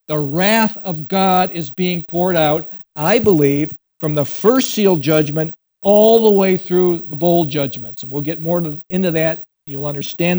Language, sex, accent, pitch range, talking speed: English, male, American, 150-190 Hz, 175 wpm